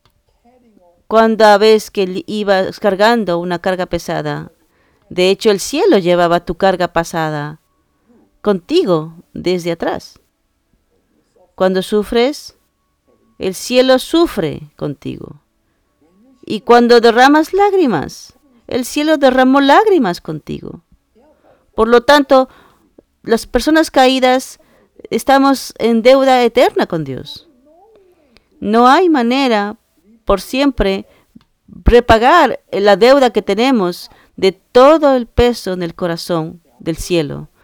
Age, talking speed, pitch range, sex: 40-59, 105 wpm, 190-265 Hz, female